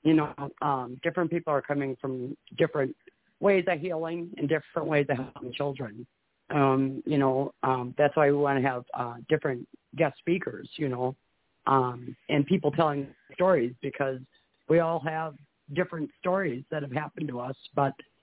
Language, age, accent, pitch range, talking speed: English, 40-59, American, 135-160 Hz, 165 wpm